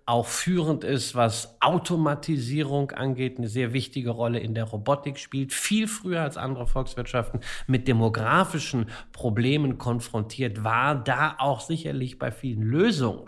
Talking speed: 135 wpm